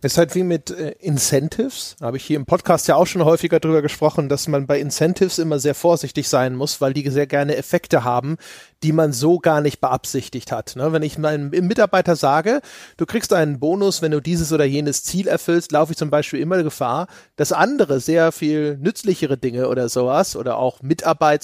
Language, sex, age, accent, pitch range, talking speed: German, male, 30-49, German, 145-180 Hz, 205 wpm